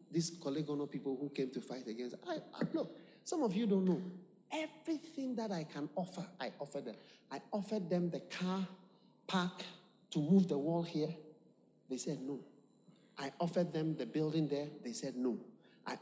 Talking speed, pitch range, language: 175 wpm, 175-260 Hz, English